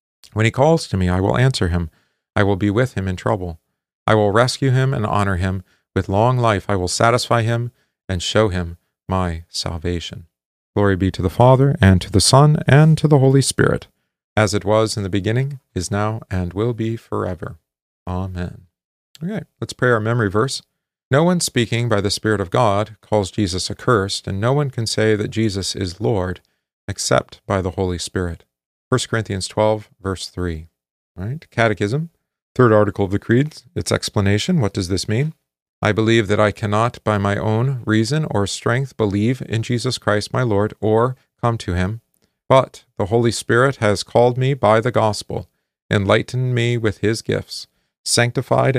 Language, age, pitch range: English, 40-59, 95-125 Hz